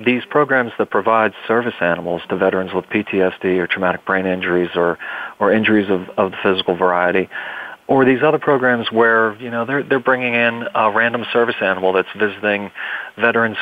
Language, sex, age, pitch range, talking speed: English, male, 40-59, 95-120 Hz, 175 wpm